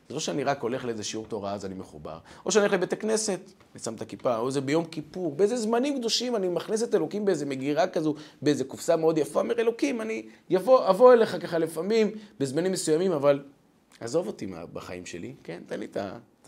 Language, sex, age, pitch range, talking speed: Hebrew, male, 30-49, 105-170 Hz, 200 wpm